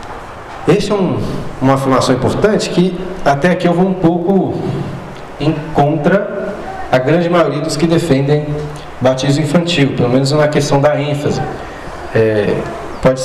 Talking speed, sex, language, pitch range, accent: 140 wpm, male, Portuguese, 130-175 Hz, Brazilian